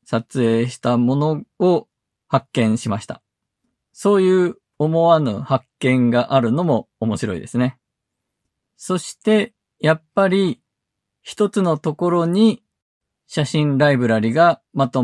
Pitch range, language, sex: 125-175 Hz, Japanese, male